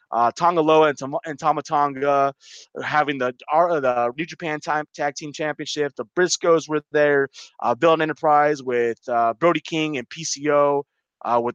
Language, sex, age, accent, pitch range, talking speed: English, male, 20-39, American, 130-175 Hz, 185 wpm